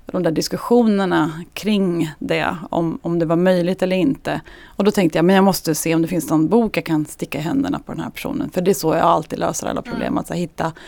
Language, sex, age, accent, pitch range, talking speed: Swedish, female, 30-49, native, 165-200 Hz, 245 wpm